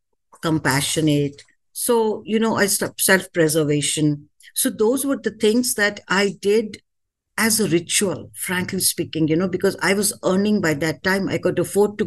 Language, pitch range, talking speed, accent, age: English, 170-225 Hz, 165 wpm, Indian, 60-79